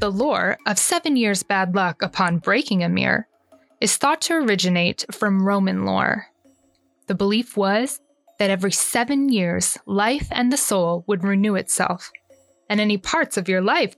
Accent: American